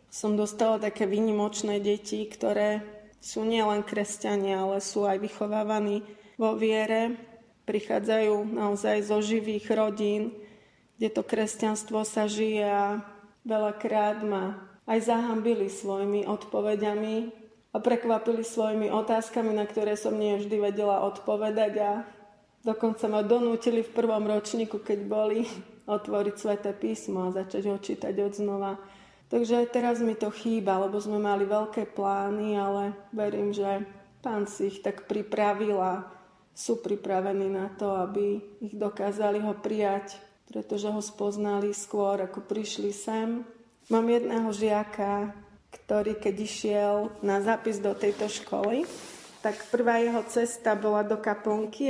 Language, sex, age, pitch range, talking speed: Slovak, female, 30-49, 205-220 Hz, 130 wpm